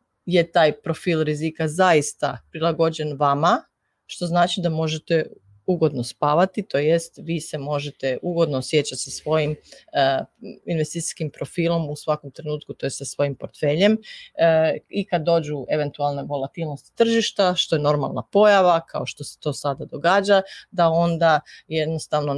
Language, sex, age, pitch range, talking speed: Croatian, female, 30-49, 145-165 Hz, 140 wpm